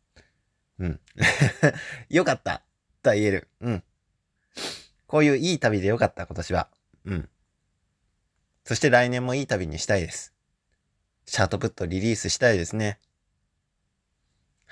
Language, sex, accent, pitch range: Japanese, male, native, 80-110 Hz